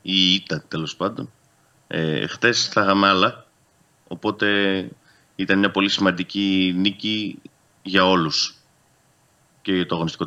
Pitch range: 90-105 Hz